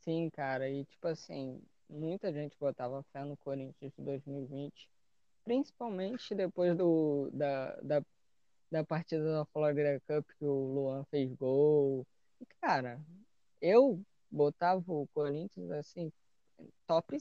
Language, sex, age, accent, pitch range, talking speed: Portuguese, female, 20-39, Brazilian, 140-180 Hz, 125 wpm